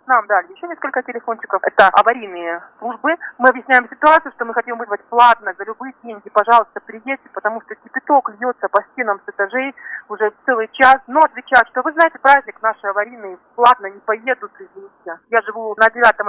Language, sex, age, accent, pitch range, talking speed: Russian, male, 30-49, native, 210-260 Hz, 175 wpm